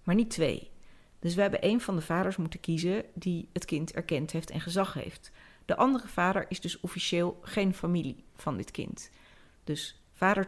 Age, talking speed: 40-59, 190 wpm